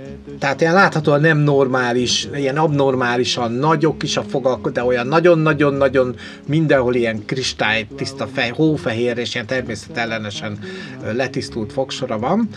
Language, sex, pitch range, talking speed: Hungarian, male, 130-175 Hz, 125 wpm